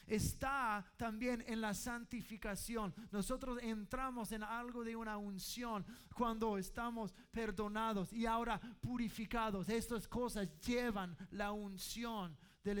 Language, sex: English, male